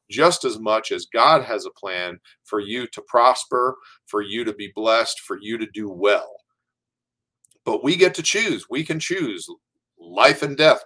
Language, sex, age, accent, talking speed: English, male, 40-59, American, 180 wpm